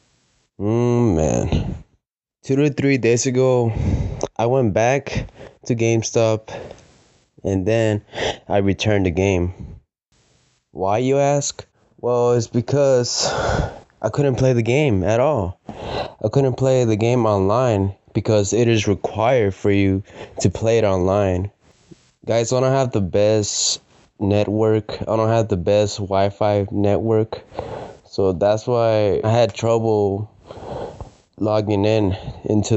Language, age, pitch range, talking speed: English, 20-39, 95-115 Hz, 130 wpm